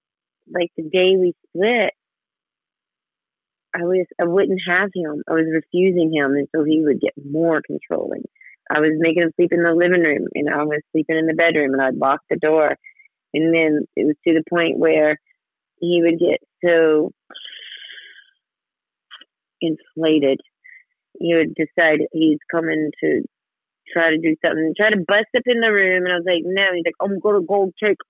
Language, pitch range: English, 160-190 Hz